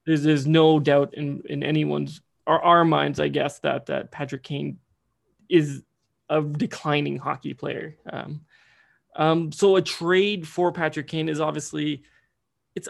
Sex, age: male, 20-39